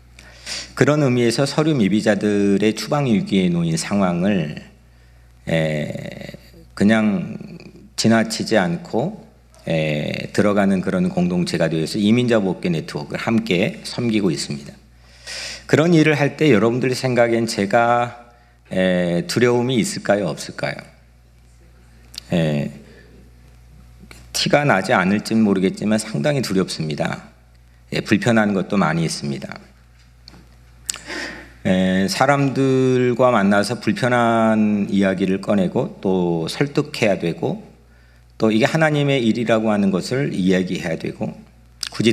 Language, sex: Korean, male